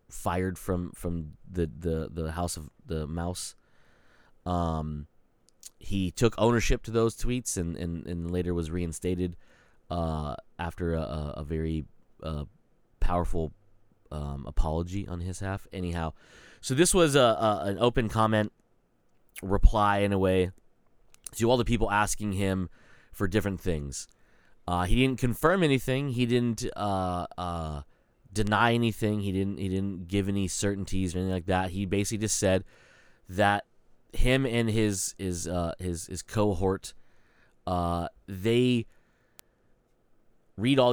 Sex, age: male, 30-49